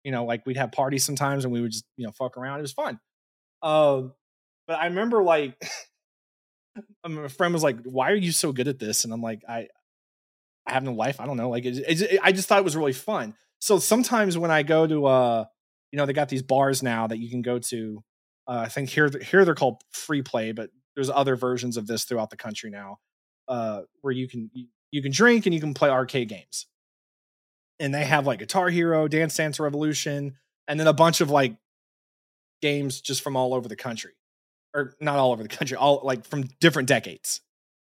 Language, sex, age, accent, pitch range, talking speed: English, male, 30-49, American, 120-150 Hz, 220 wpm